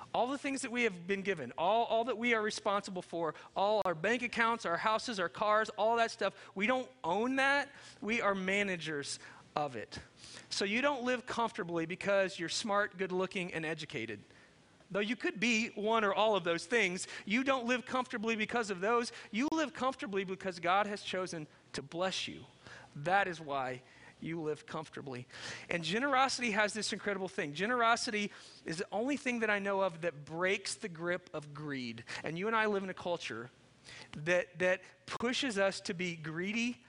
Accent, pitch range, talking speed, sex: American, 180-230 Hz, 190 wpm, male